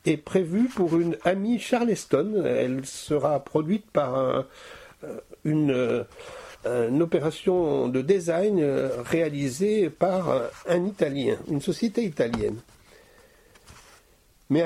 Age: 60-79